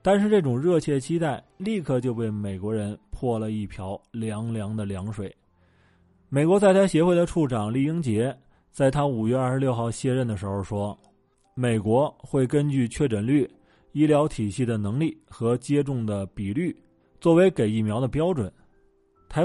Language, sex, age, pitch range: Chinese, male, 20-39, 105-150 Hz